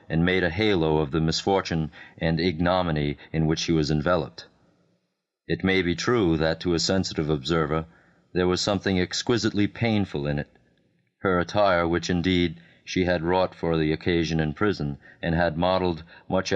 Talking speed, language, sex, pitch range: 165 wpm, English, male, 80-105 Hz